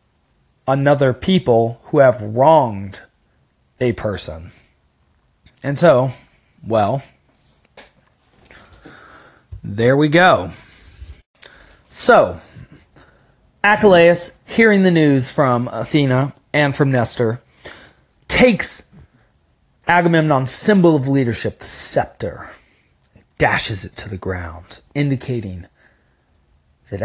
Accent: American